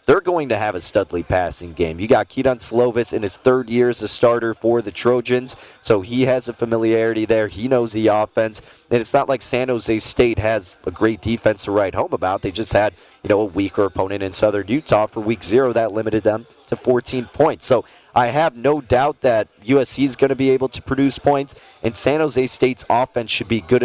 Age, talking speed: 30-49, 225 wpm